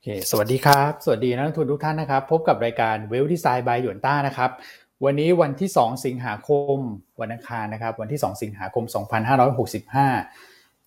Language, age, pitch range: Thai, 20-39, 115-140 Hz